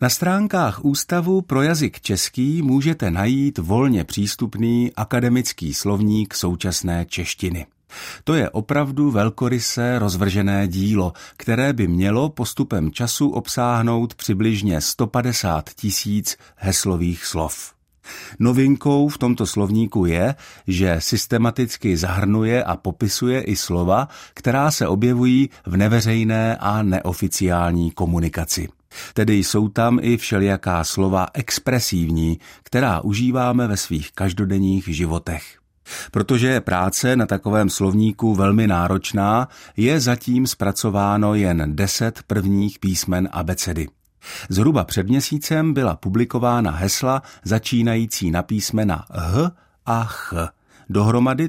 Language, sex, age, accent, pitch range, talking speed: Czech, male, 50-69, native, 90-120 Hz, 105 wpm